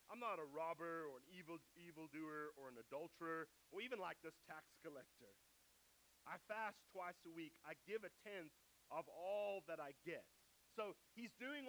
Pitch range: 155-200 Hz